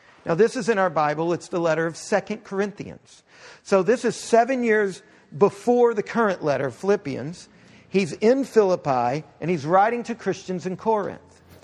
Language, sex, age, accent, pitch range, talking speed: English, male, 50-69, American, 170-215 Hz, 170 wpm